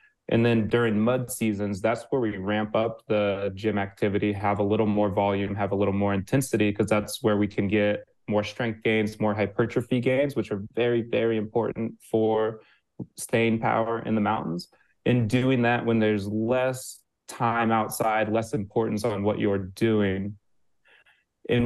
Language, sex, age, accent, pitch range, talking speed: English, male, 20-39, American, 105-115 Hz, 170 wpm